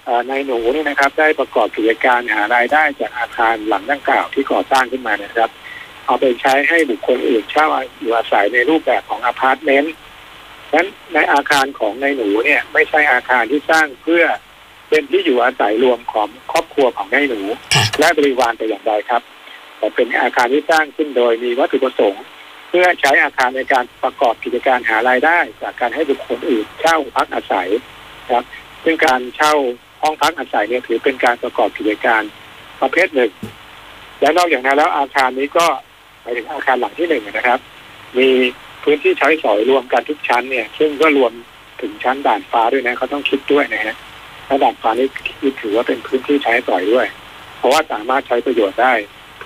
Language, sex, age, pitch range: Thai, male, 60-79, 120-150 Hz